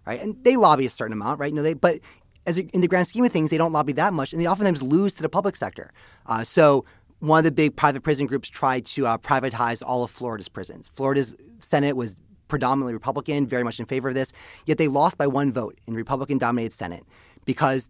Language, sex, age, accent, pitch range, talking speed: English, male, 30-49, American, 120-155 Hz, 240 wpm